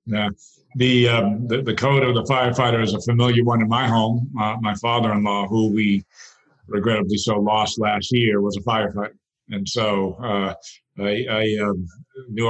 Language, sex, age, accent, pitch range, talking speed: English, male, 50-69, American, 100-115 Hz, 175 wpm